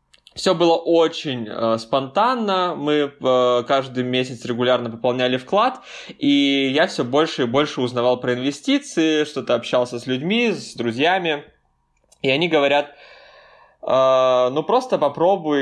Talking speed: 130 wpm